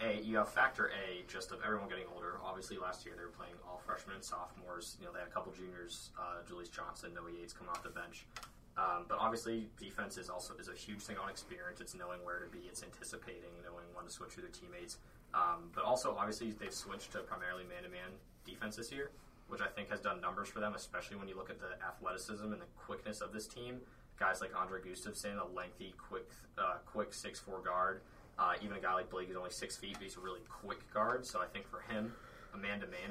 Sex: male